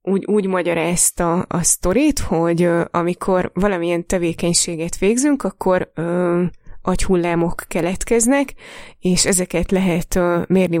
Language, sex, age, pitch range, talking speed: Hungarian, female, 20-39, 170-195 Hz, 115 wpm